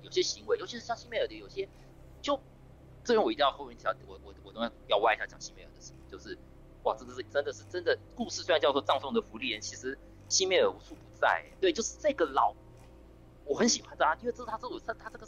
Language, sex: Chinese, male